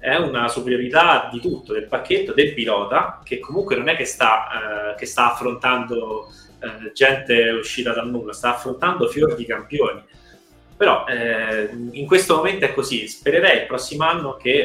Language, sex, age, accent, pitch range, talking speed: Italian, male, 20-39, native, 115-150 Hz, 170 wpm